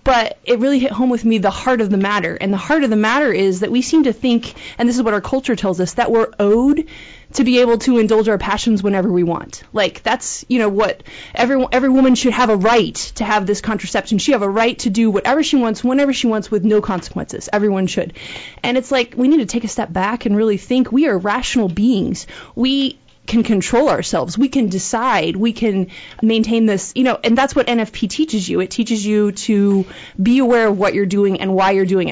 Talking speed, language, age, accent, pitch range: 240 wpm, English, 20-39, American, 200-245 Hz